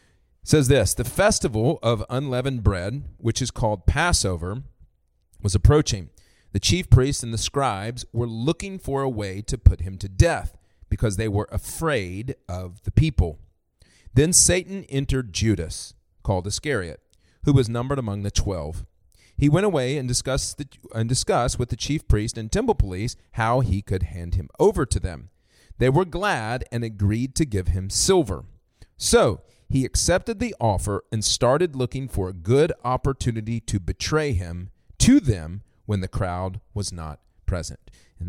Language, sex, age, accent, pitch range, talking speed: English, male, 40-59, American, 95-130 Hz, 165 wpm